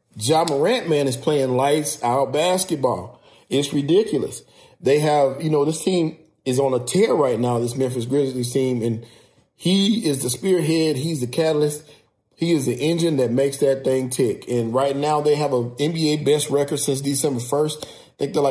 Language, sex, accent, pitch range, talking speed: English, male, American, 125-155 Hz, 185 wpm